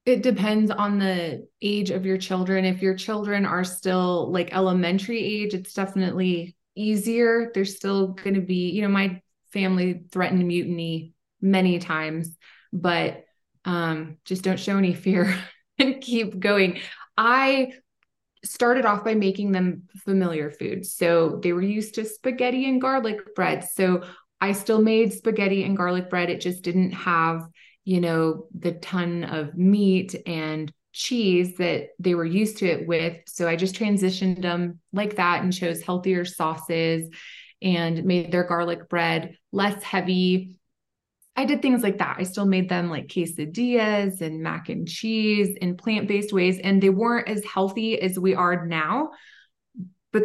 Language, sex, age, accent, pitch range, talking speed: English, female, 20-39, American, 175-205 Hz, 155 wpm